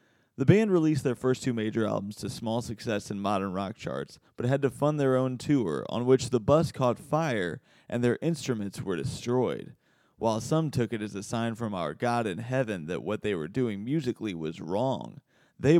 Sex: male